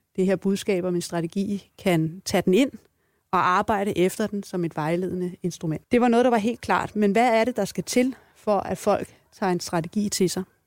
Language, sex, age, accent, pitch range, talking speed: Danish, female, 30-49, native, 180-210 Hz, 220 wpm